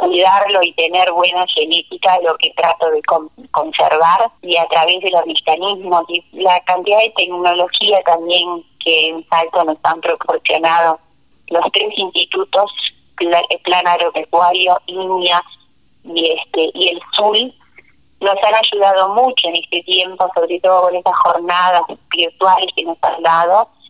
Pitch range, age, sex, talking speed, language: 170-195 Hz, 30-49, female, 145 wpm, Spanish